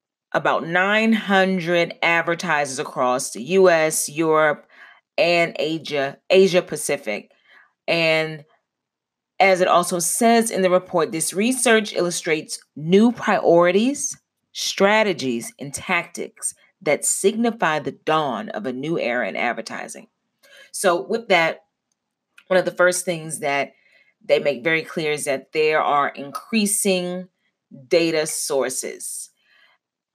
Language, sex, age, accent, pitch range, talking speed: English, female, 30-49, American, 160-205 Hz, 115 wpm